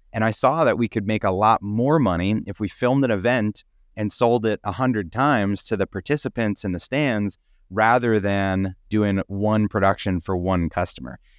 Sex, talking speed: male, 190 wpm